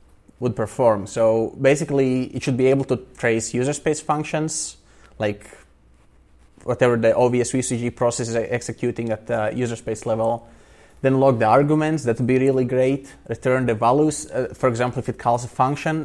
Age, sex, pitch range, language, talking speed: 20-39, male, 115-130 Hz, English, 170 wpm